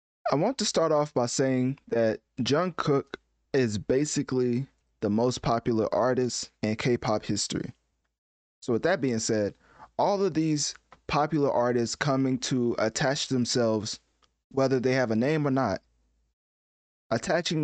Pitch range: 110-140 Hz